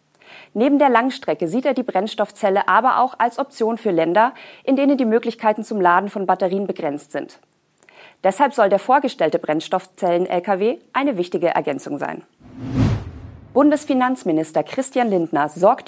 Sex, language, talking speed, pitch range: female, German, 135 wpm, 180-245 Hz